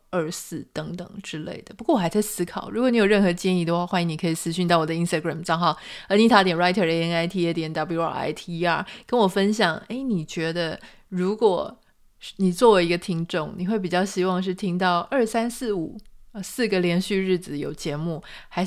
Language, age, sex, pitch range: Chinese, 20-39, female, 165-195 Hz